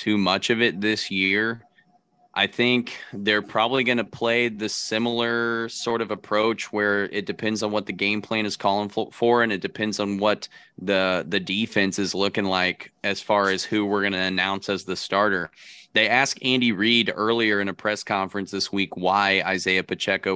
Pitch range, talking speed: 95-110 Hz, 190 wpm